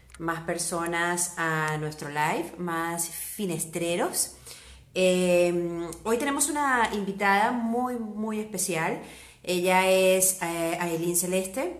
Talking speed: 95 wpm